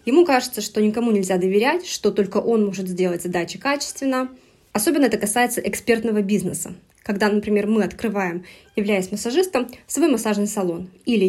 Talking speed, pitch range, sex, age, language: 150 wpm, 195-255 Hz, female, 20-39, Russian